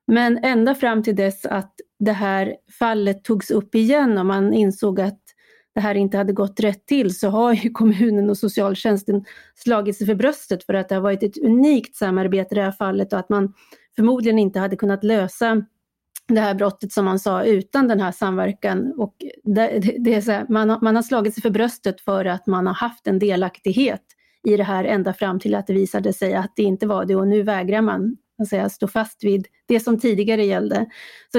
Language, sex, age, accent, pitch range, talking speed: Swedish, female, 30-49, native, 200-230 Hz, 210 wpm